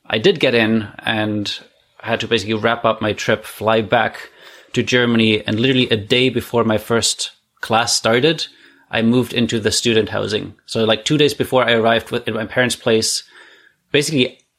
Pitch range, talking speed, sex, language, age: 110-125 Hz, 175 wpm, male, English, 30-49